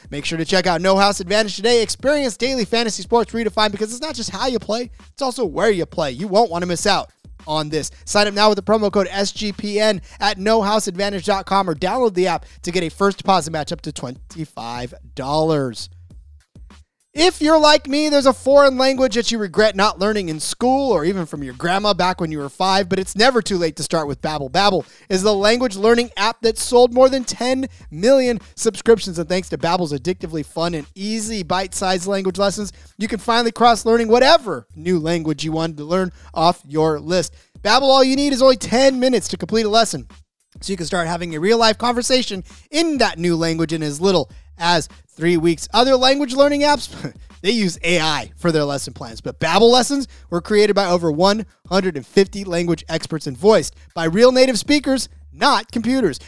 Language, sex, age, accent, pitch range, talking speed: English, male, 30-49, American, 165-230 Hz, 200 wpm